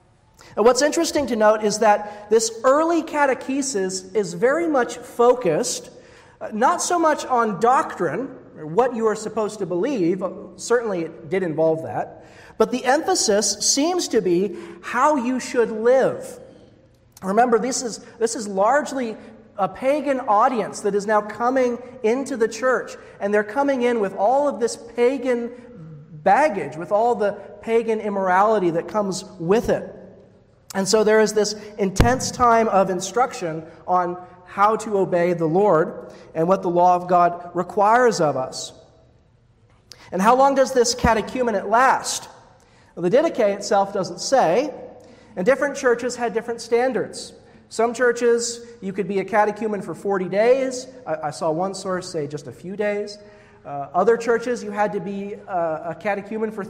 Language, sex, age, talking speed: English, male, 40-59, 155 wpm